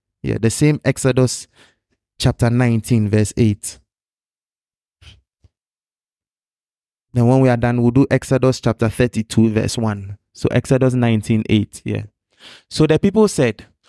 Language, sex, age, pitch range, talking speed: English, male, 20-39, 115-155 Hz, 125 wpm